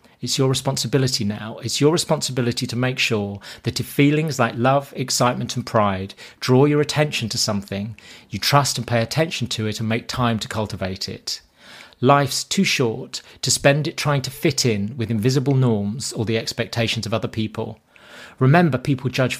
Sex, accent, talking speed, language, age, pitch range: male, British, 180 wpm, English, 30-49, 110-140 Hz